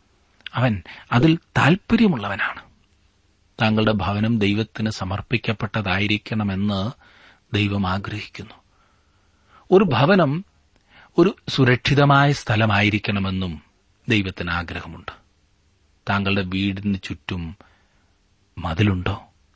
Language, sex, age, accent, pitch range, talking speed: Malayalam, male, 30-49, native, 90-115 Hz, 60 wpm